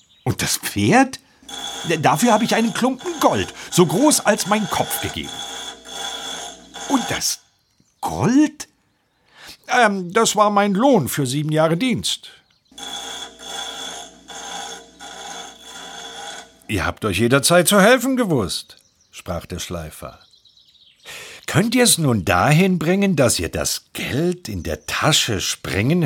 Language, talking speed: German, 115 wpm